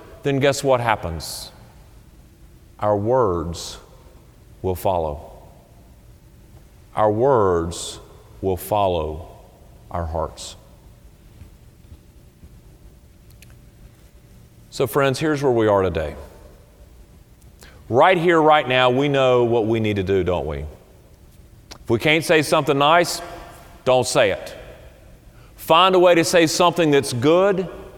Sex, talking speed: male, 110 wpm